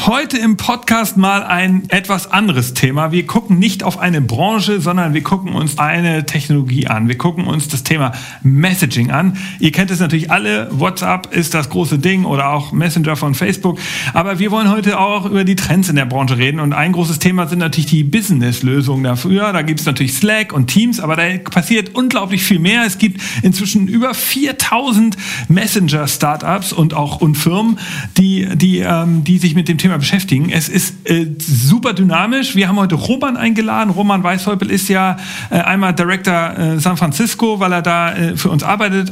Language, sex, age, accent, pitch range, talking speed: German, male, 40-59, German, 165-200 Hz, 190 wpm